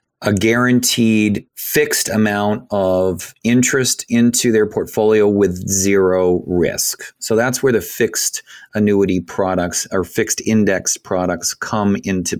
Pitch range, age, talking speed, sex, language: 90-105 Hz, 30-49, 120 wpm, male, English